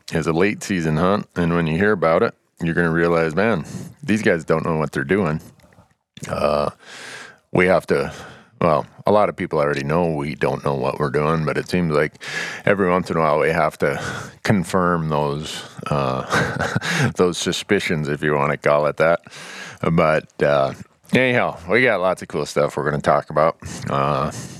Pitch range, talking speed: 75-90 Hz, 195 wpm